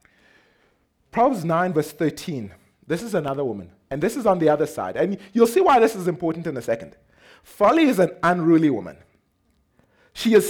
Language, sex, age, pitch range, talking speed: English, male, 30-49, 135-200 Hz, 185 wpm